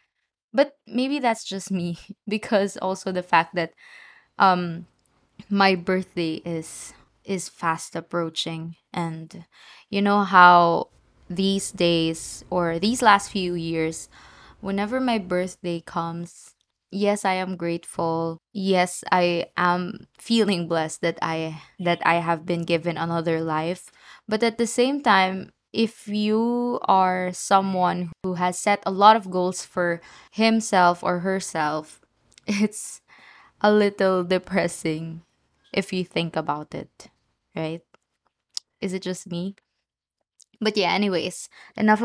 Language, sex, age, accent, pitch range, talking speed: English, female, 20-39, Filipino, 170-210 Hz, 125 wpm